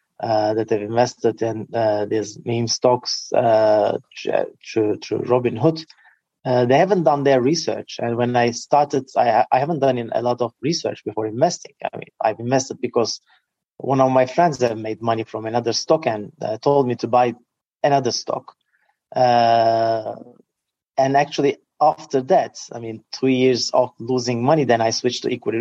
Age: 30-49